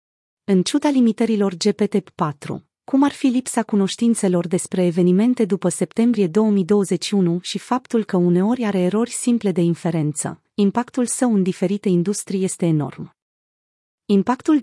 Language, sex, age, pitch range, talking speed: Romanian, female, 30-49, 180-220 Hz, 125 wpm